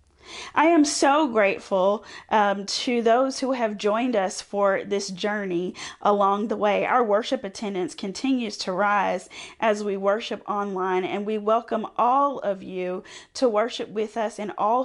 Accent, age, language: American, 40-59, English